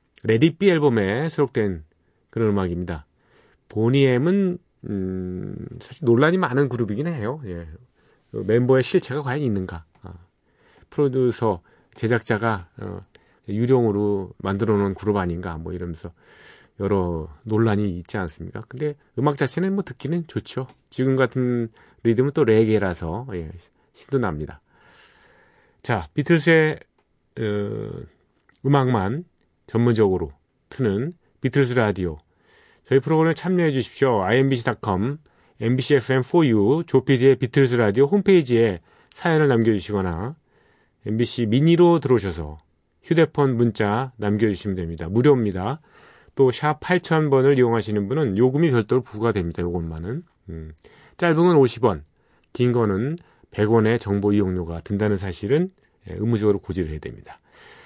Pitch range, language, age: 95-140 Hz, Korean, 40-59